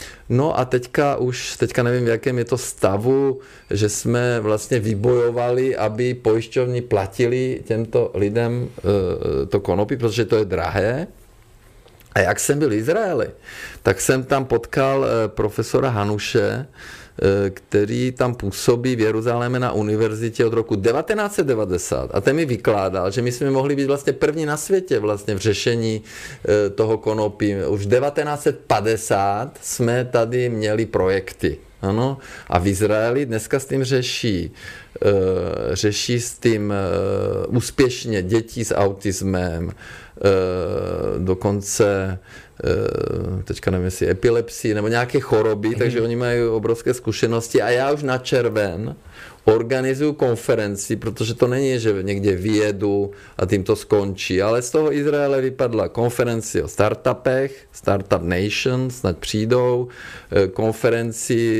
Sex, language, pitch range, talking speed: male, Czech, 105-125 Hz, 125 wpm